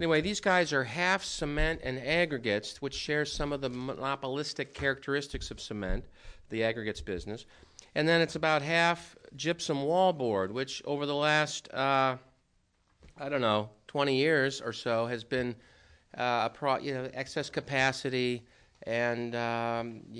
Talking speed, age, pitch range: 145 wpm, 50-69, 115-135 Hz